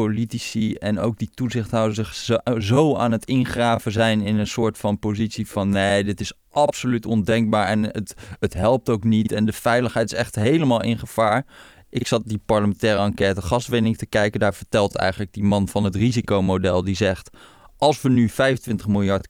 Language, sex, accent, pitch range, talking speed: Dutch, male, Dutch, 105-125 Hz, 185 wpm